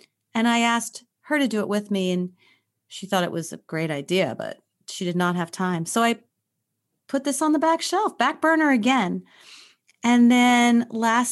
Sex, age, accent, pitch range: female, 30-49, American, 180-240 Hz